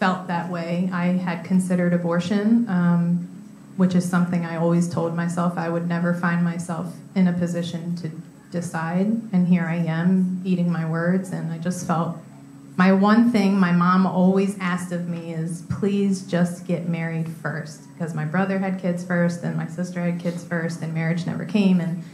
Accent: American